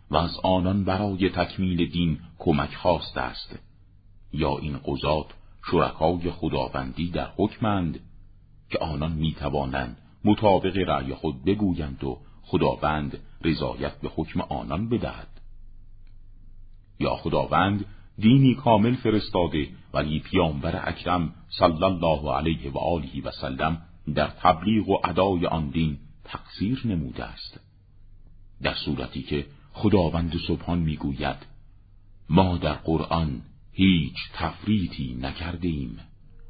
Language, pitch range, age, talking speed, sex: Persian, 75-100 Hz, 50-69, 110 wpm, male